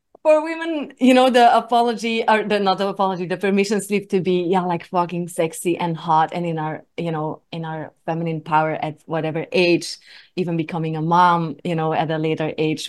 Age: 30-49